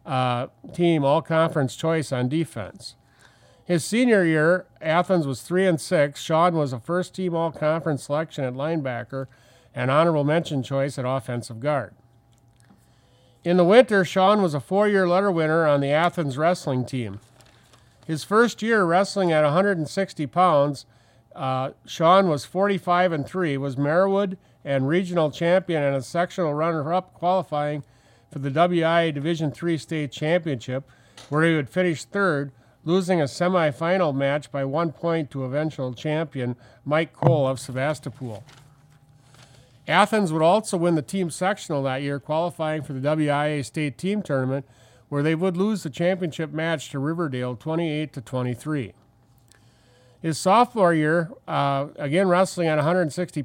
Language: English